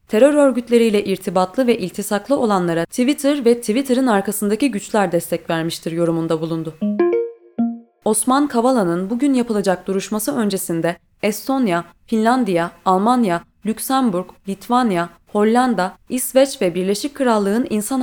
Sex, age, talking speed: female, 20-39, 105 wpm